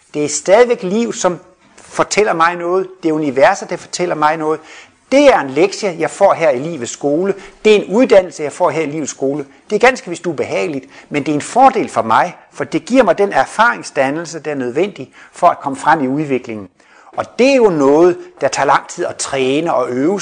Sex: male